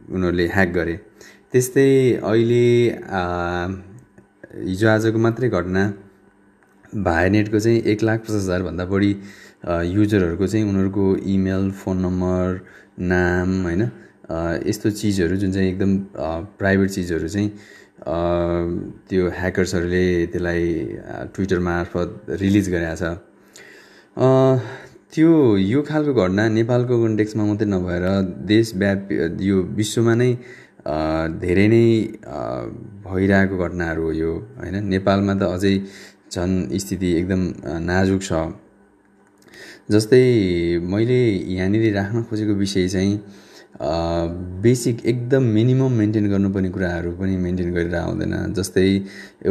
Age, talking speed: 20-39, 110 wpm